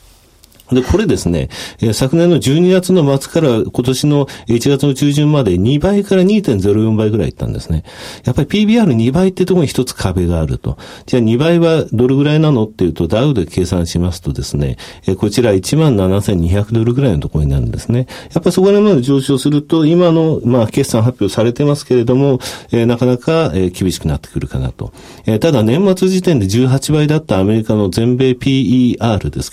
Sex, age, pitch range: male, 40-59, 95-145 Hz